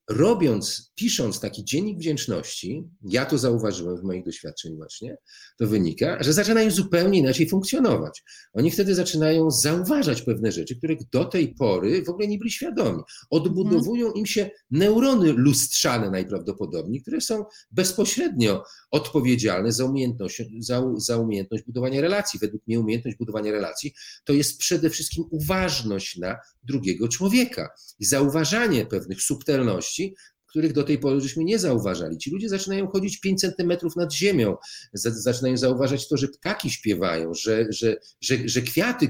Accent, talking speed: native, 140 wpm